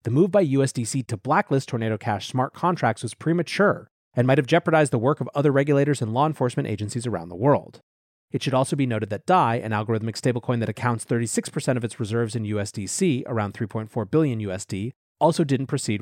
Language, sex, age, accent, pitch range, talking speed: English, male, 30-49, American, 115-150 Hz, 195 wpm